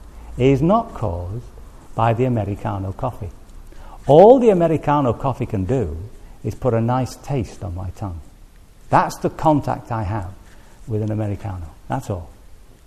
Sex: male